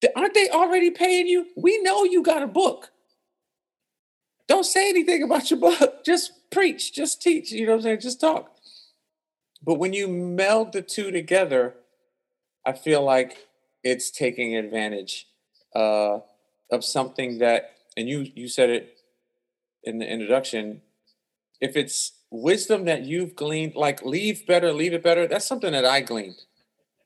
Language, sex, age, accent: English, male, 40-59, American